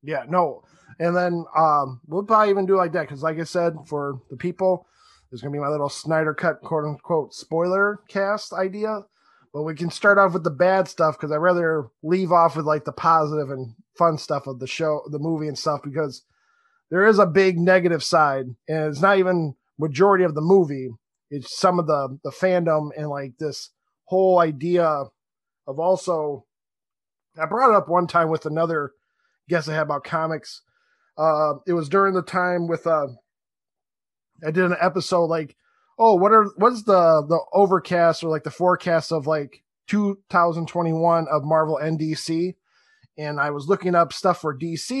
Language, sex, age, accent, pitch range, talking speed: English, male, 20-39, American, 150-185 Hz, 185 wpm